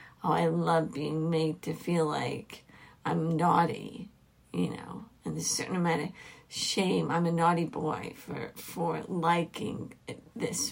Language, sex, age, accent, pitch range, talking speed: English, female, 50-69, American, 175-225 Hz, 155 wpm